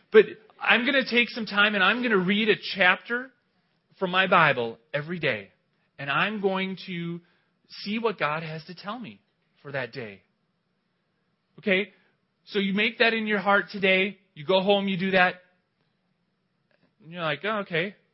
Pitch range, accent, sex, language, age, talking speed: 170-205 Hz, American, male, English, 30-49, 175 wpm